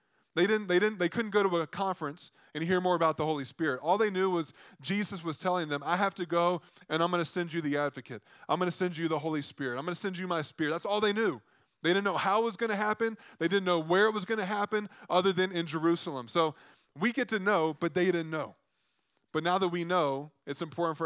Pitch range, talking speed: 140-180 Hz, 270 wpm